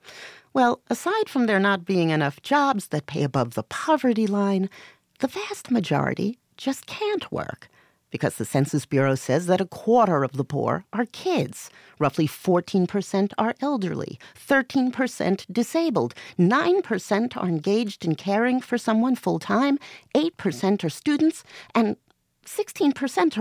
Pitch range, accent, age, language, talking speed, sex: 155-250 Hz, American, 50-69, English, 135 wpm, female